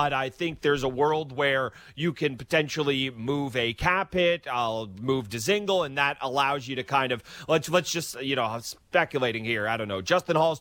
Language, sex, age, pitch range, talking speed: English, male, 30-49, 125-155 Hz, 215 wpm